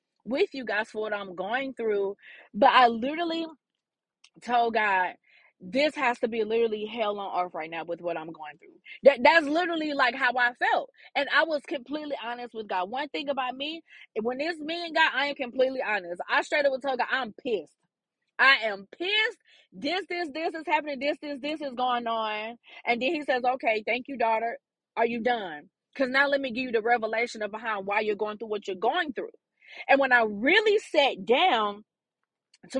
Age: 30-49